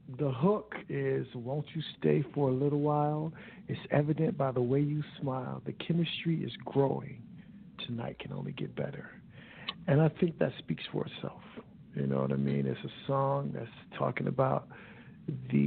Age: 50-69